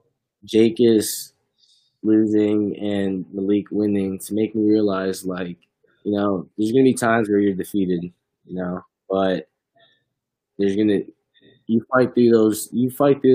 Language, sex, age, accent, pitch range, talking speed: English, male, 10-29, American, 95-110 Hz, 145 wpm